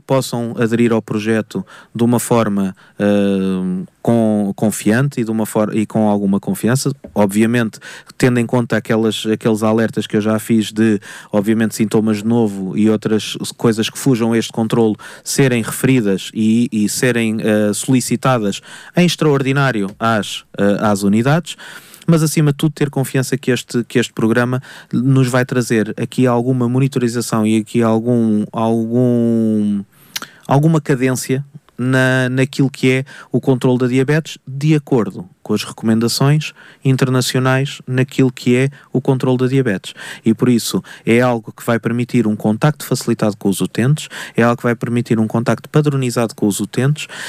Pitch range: 110-135 Hz